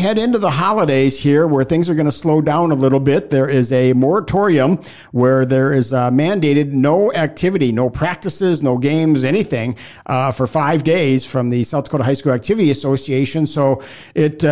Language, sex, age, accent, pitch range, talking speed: English, male, 50-69, American, 130-150 Hz, 185 wpm